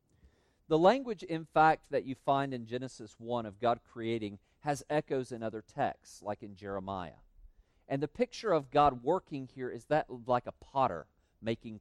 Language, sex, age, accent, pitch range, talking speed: English, male, 40-59, American, 90-140 Hz, 175 wpm